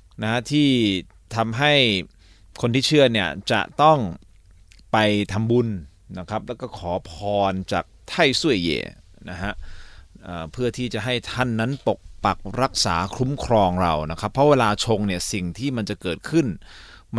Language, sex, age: Thai, male, 20-39